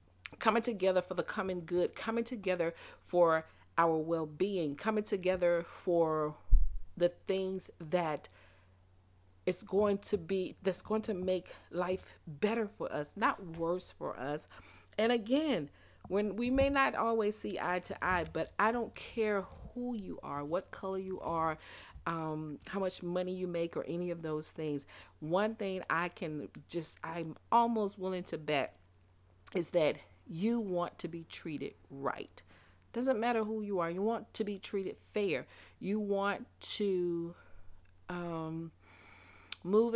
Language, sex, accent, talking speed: English, female, American, 150 wpm